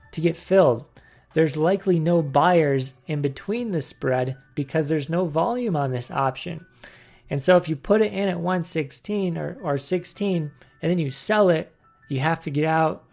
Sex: male